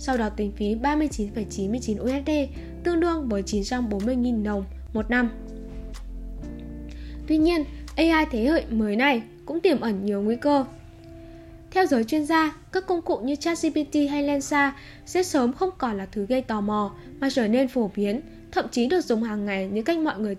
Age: 10-29